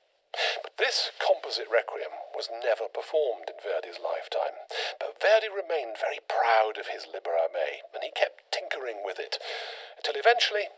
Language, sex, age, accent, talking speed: English, male, 50-69, British, 150 wpm